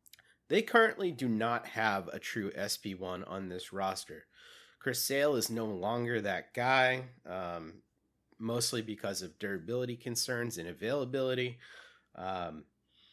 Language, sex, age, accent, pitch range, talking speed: English, male, 30-49, American, 100-125 Hz, 125 wpm